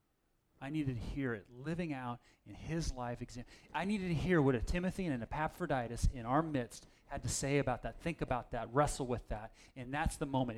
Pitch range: 130-165 Hz